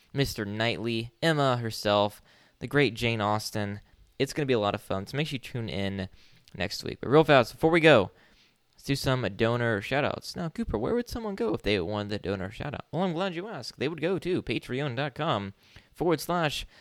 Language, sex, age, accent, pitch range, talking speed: English, male, 10-29, American, 105-150 Hz, 210 wpm